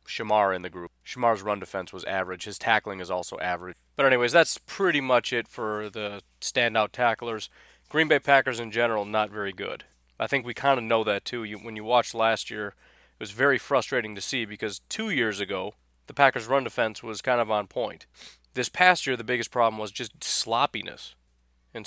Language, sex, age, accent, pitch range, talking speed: English, male, 30-49, American, 100-120 Hz, 205 wpm